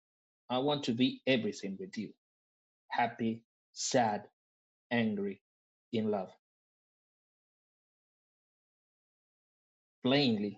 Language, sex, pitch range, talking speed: English, male, 110-140 Hz, 75 wpm